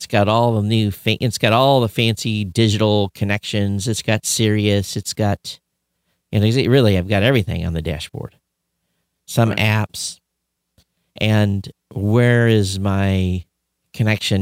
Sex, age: male, 50-69